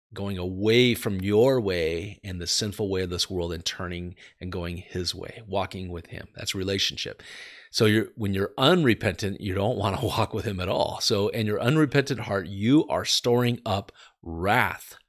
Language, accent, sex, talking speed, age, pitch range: English, American, male, 185 wpm, 40-59, 95-125 Hz